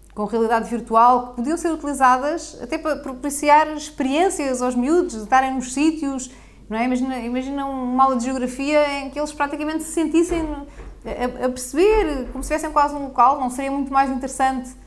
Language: Portuguese